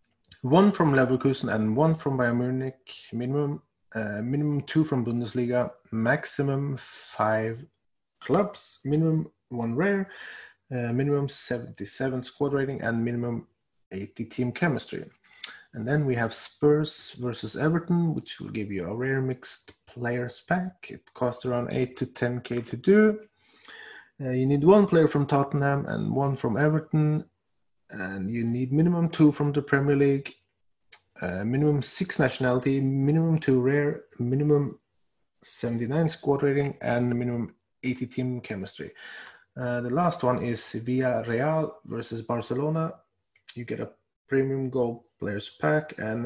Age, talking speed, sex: 30-49, 140 wpm, male